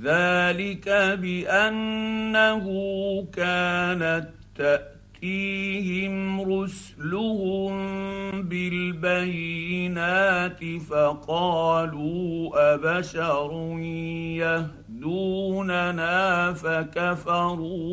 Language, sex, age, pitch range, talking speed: Arabic, male, 50-69, 145-180 Hz, 35 wpm